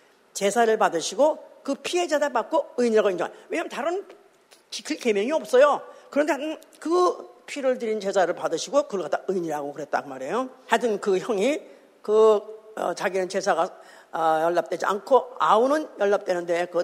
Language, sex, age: Korean, female, 50-69